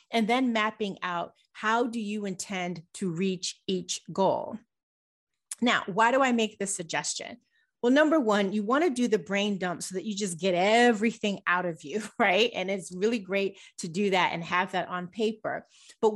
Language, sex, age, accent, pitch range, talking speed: English, female, 30-49, American, 190-265 Hz, 190 wpm